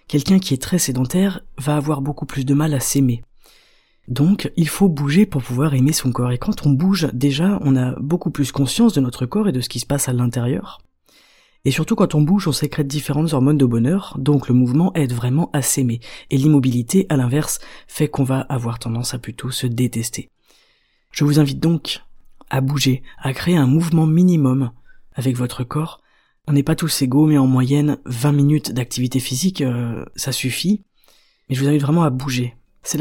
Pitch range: 125-155 Hz